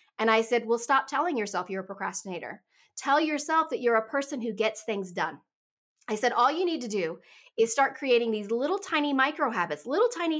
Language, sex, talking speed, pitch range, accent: English, female, 215 wpm, 205-290 Hz, American